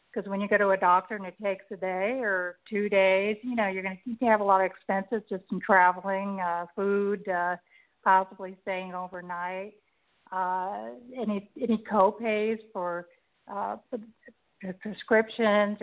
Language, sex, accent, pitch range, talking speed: English, female, American, 195-220 Hz, 150 wpm